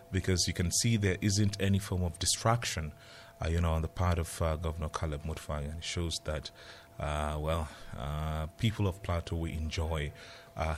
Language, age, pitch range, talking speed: English, 30-49, 85-105 Hz, 190 wpm